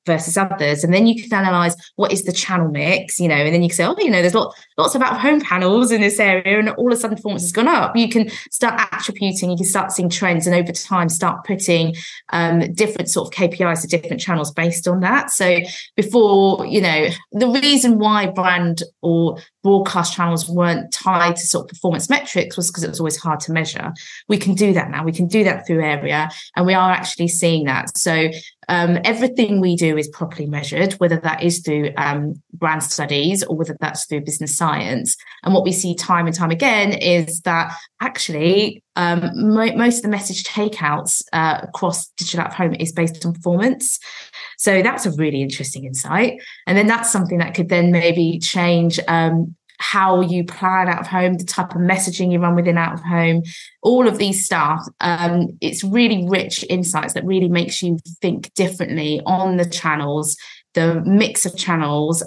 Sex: female